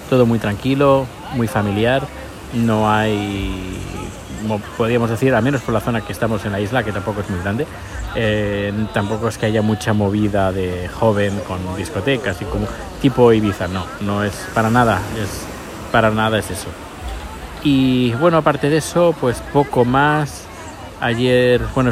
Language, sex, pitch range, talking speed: Spanish, male, 105-125 Hz, 160 wpm